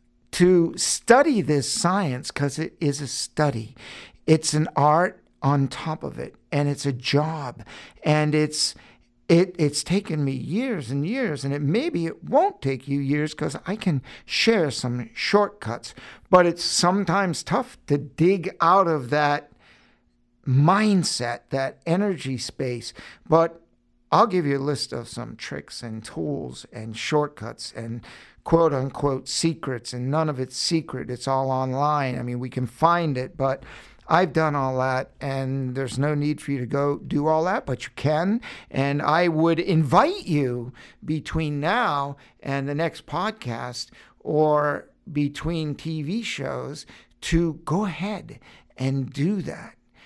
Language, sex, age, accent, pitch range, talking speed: English, male, 60-79, American, 130-165 Hz, 150 wpm